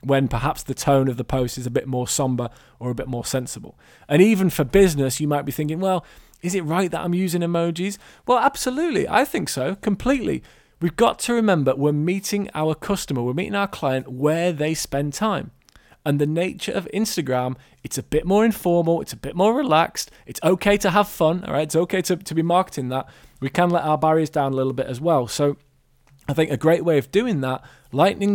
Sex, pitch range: male, 130-175 Hz